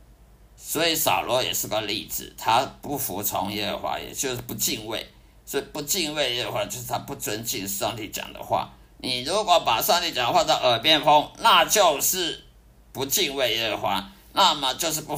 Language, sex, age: Chinese, male, 50-69